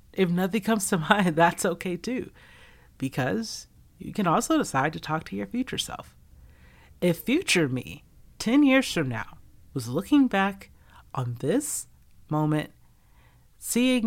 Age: 40-59